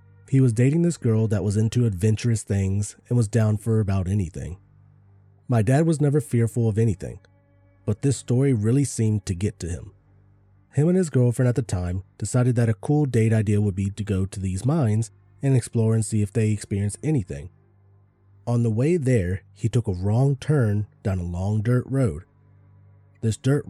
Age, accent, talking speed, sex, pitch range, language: 30-49, American, 190 wpm, male, 100-130 Hz, English